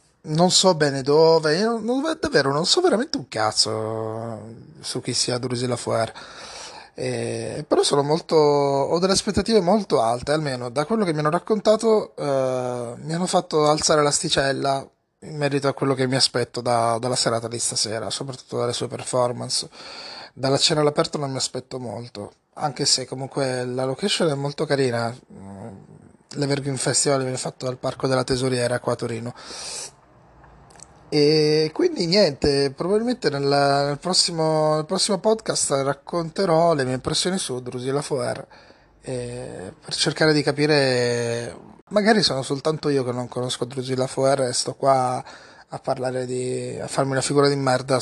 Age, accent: 20-39, native